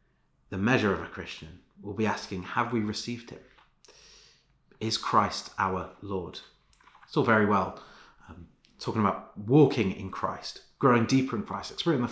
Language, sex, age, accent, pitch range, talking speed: English, male, 30-49, British, 95-115 Hz, 160 wpm